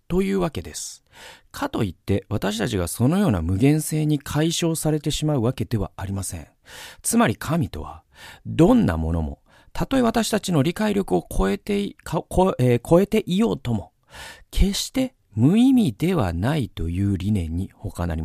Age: 40-59